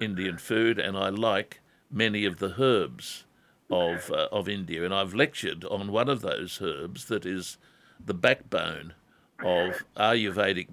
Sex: male